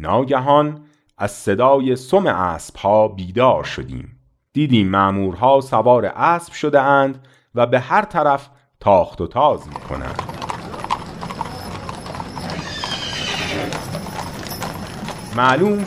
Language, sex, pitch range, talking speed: Persian, male, 105-150 Hz, 85 wpm